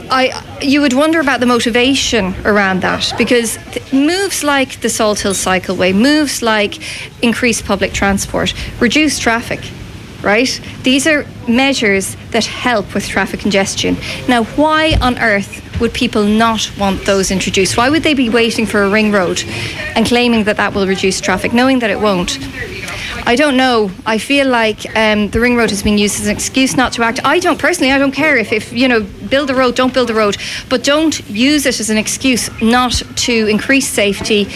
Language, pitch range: English, 205-255 Hz